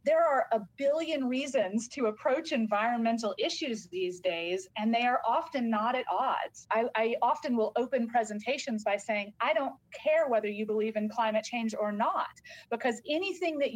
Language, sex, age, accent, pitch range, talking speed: English, female, 30-49, American, 210-260 Hz, 175 wpm